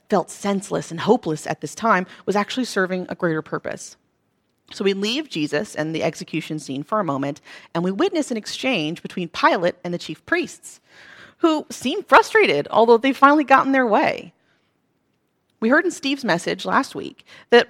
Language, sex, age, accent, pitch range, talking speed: English, female, 30-49, American, 165-245 Hz, 175 wpm